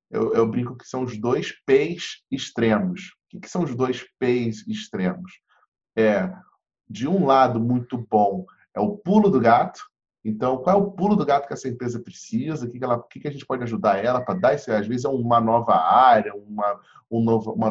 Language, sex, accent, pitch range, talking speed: Portuguese, male, Brazilian, 125-180 Hz, 190 wpm